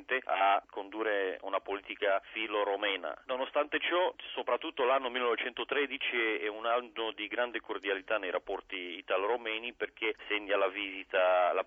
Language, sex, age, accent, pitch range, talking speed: Italian, male, 40-59, native, 90-100 Hz, 125 wpm